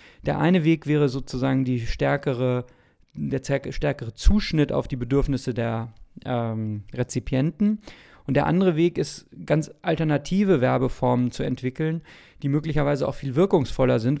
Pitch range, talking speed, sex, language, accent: 125-145 Hz, 140 wpm, male, German, German